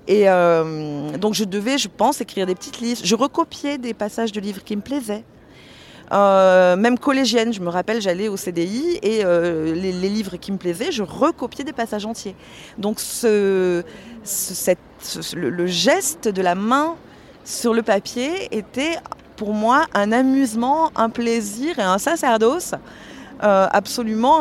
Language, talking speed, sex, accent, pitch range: French, 165 wpm, female, French, 195-250 Hz